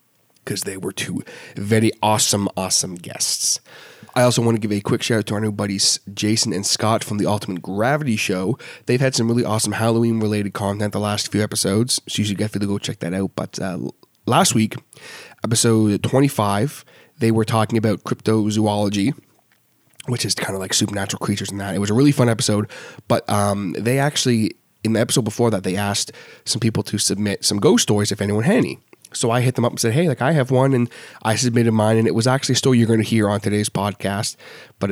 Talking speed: 220 wpm